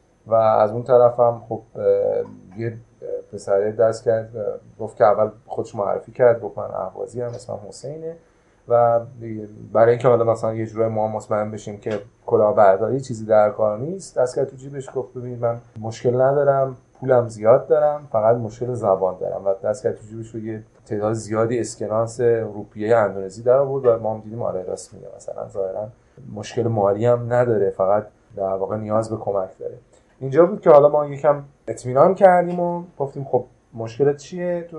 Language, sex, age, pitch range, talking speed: Persian, male, 30-49, 110-135 Hz, 170 wpm